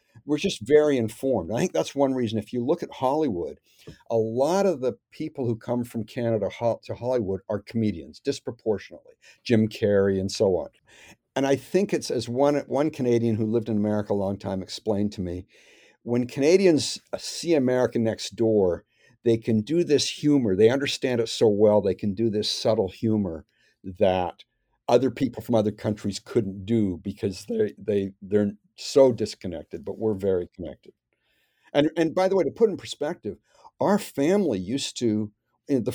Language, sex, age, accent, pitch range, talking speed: English, male, 60-79, American, 105-140 Hz, 175 wpm